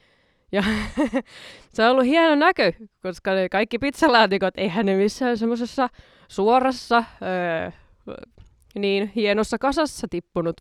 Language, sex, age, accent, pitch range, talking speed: Finnish, female, 20-39, native, 175-260 Hz, 115 wpm